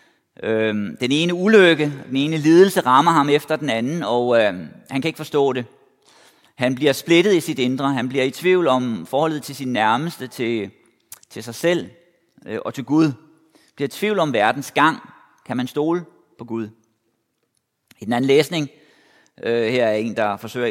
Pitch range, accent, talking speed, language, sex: 125-165 Hz, native, 185 wpm, Danish, male